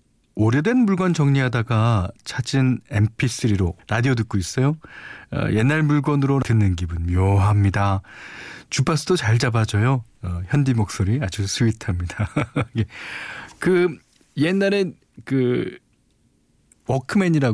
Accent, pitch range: native, 100-145 Hz